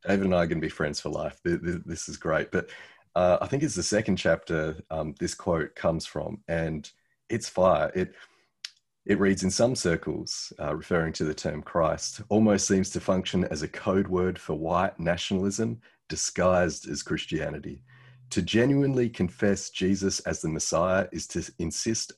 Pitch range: 85-105 Hz